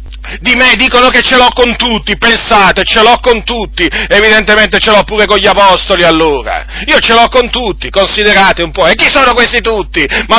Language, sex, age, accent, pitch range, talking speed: Italian, male, 40-59, native, 230-270 Hz, 200 wpm